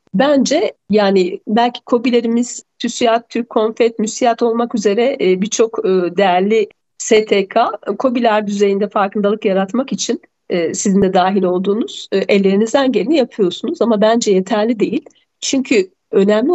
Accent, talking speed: native, 110 wpm